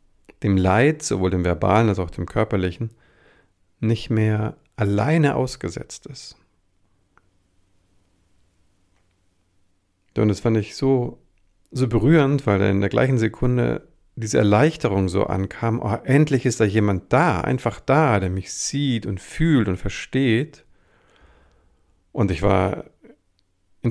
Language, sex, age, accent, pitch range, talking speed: German, male, 50-69, German, 95-115 Hz, 120 wpm